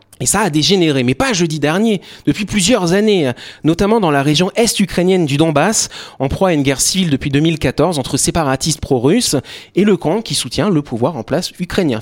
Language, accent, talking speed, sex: French, French, 195 wpm, male